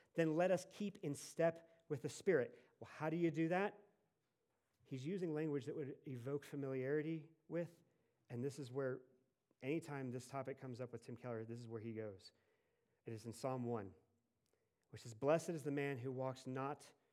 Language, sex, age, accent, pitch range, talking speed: English, male, 40-59, American, 120-155 Hz, 190 wpm